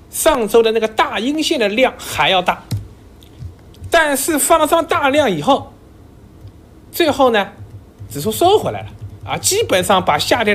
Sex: male